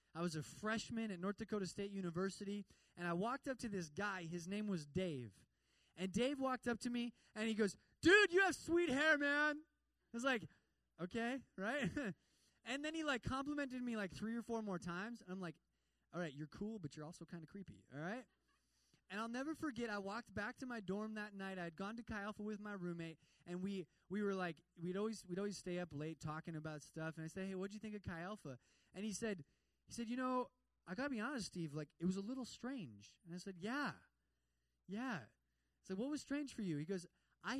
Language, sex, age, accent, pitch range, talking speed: English, male, 20-39, American, 160-230 Hz, 235 wpm